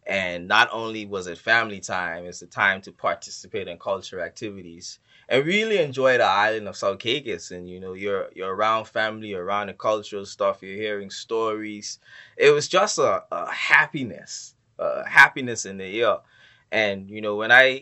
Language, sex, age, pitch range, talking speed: English, male, 20-39, 95-110 Hz, 180 wpm